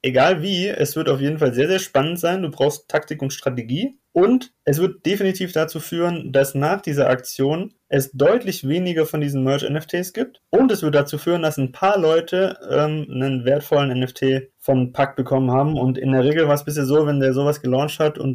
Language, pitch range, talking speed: German, 135-160 Hz, 215 wpm